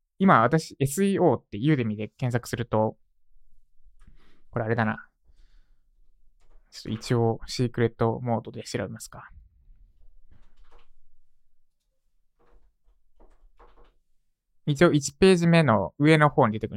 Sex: male